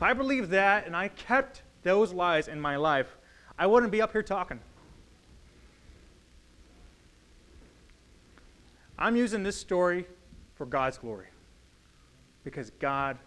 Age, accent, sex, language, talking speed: 30-49, American, male, English, 120 wpm